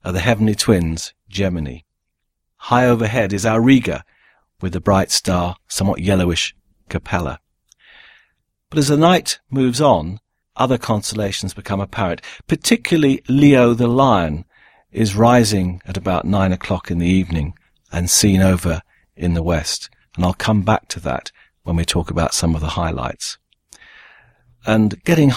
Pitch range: 90-120 Hz